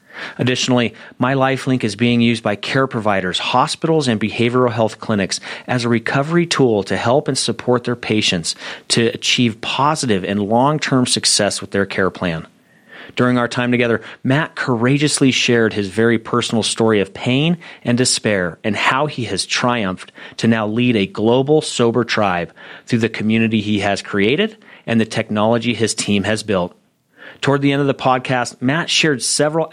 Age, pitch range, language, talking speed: 40-59, 105-130 Hz, English, 165 wpm